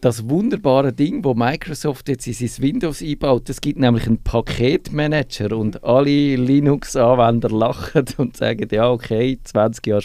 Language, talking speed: German, 150 wpm